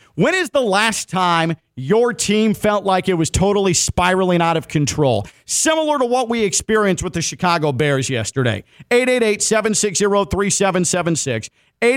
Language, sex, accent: English, male, American